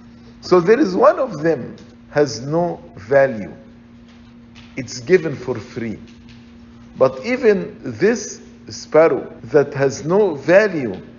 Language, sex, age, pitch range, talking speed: English, male, 50-69, 115-145 Hz, 115 wpm